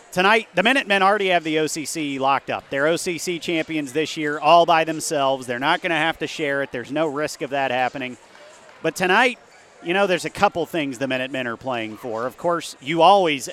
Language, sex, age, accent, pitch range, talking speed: English, male, 40-59, American, 140-185 Hz, 215 wpm